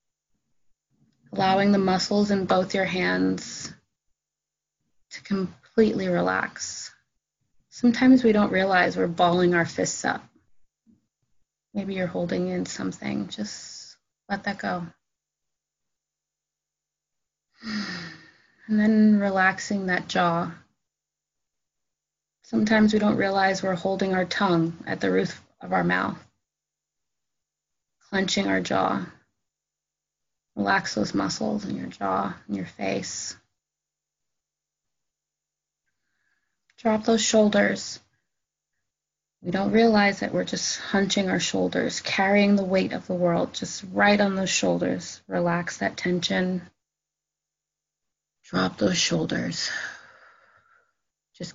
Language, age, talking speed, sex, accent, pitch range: English, 30-49, 105 wpm, female, American, 140-205 Hz